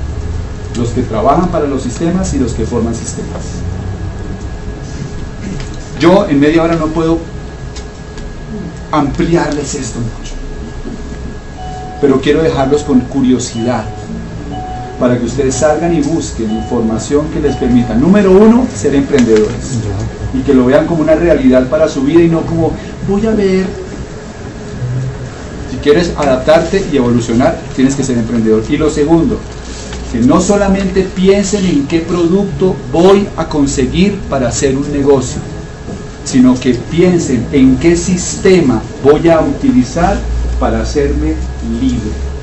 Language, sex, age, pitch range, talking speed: Spanish, male, 40-59, 120-165 Hz, 130 wpm